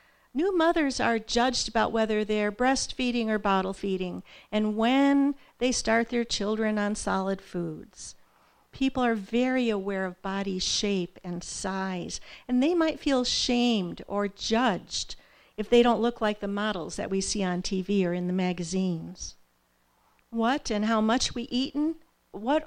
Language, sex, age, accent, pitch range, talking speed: English, female, 50-69, American, 195-250 Hz, 155 wpm